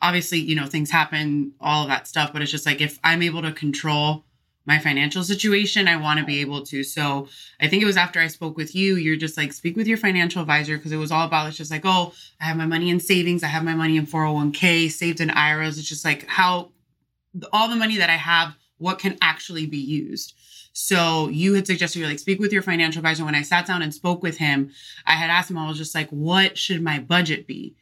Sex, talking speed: female, 250 wpm